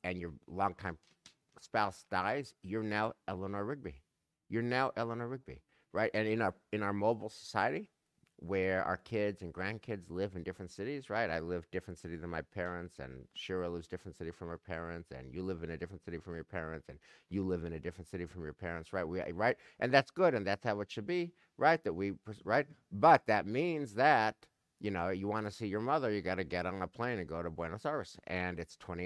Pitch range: 85-110 Hz